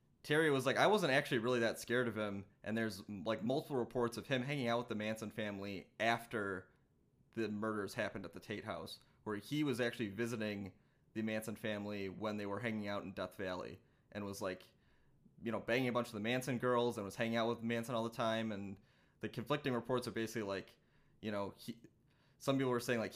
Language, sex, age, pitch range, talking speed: English, male, 20-39, 105-120 Hz, 215 wpm